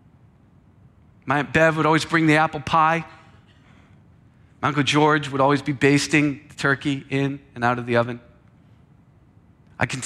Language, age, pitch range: English, 40-59, 125-155 Hz